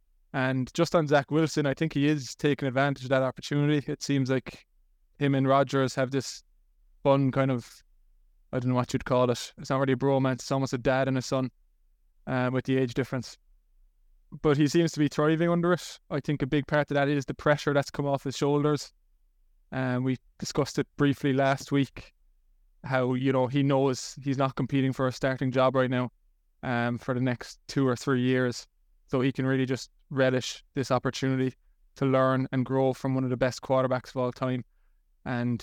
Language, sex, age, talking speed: English, male, 20-39, 210 wpm